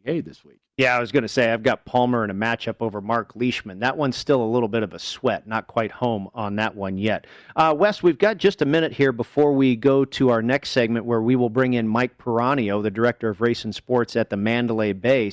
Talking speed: 255 wpm